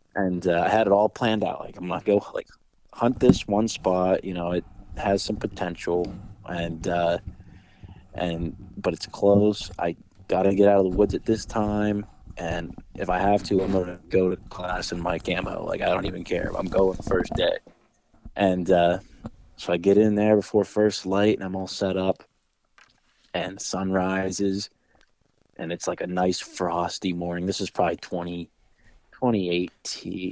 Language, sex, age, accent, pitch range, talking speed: English, male, 20-39, American, 90-100 Hz, 190 wpm